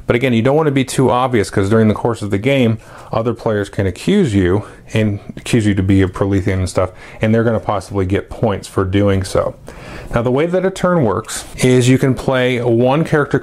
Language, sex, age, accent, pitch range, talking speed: English, male, 30-49, American, 100-125 Hz, 235 wpm